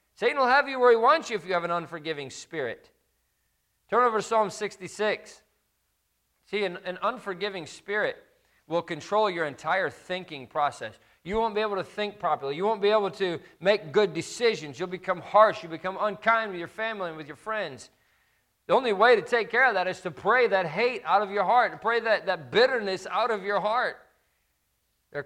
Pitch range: 150-210 Hz